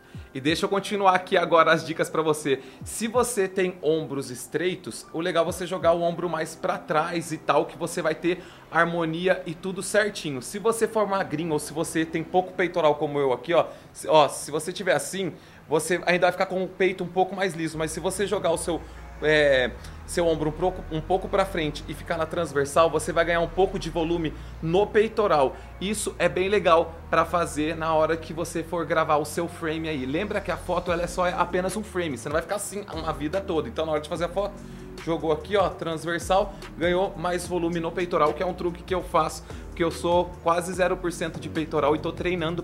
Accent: Brazilian